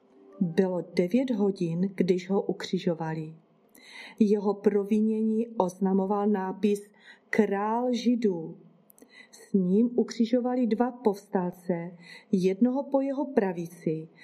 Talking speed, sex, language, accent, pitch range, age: 90 wpm, female, Czech, native, 195-235 Hz, 40-59